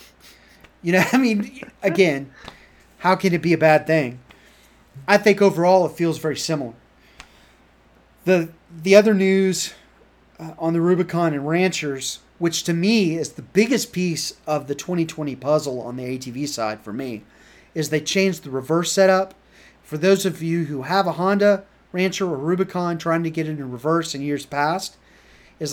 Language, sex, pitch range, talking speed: English, male, 155-190 Hz, 170 wpm